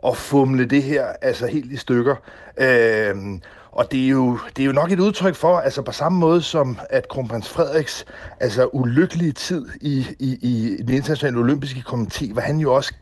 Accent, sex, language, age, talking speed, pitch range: native, male, Danish, 60-79, 195 wpm, 130-160 Hz